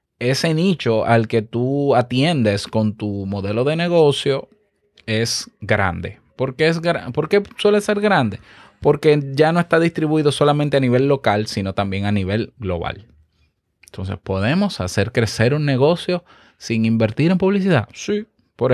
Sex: male